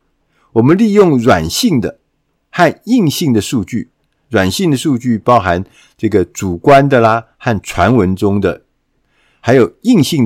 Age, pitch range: 50-69, 105-155 Hz